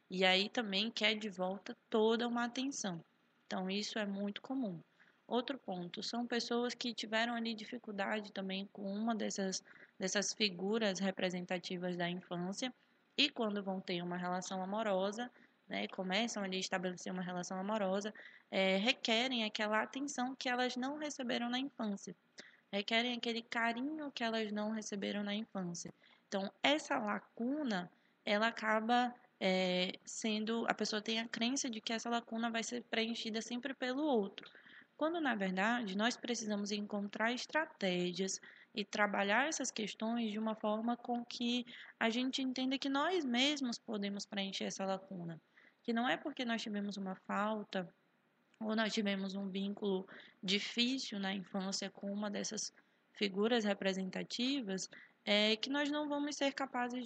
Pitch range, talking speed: 195-245 Hz, 145 wpm